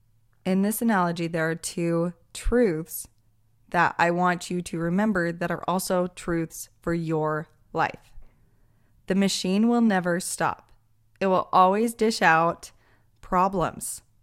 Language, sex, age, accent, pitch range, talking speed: English, female, 20-39, American, 150-200 Hz, 130 wpm